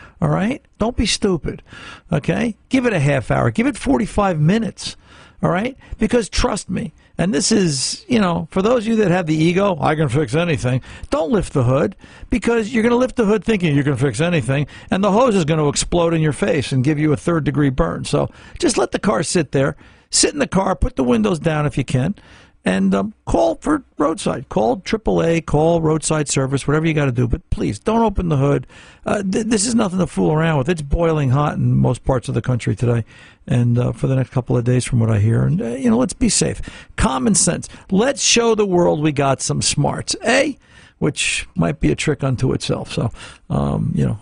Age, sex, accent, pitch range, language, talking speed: 60-79, male, American, 135-215 Hz, English, 230 wpm